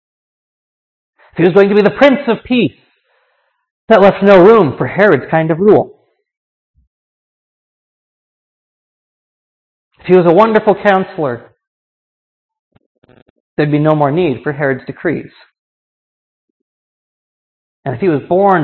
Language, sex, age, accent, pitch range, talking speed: English, male, 40-59, American, 155-220 Hz, 120 wpm